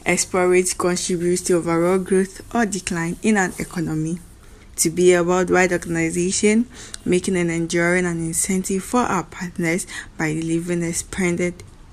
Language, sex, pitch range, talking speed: English, female, 165-190 Hz, 135 wpm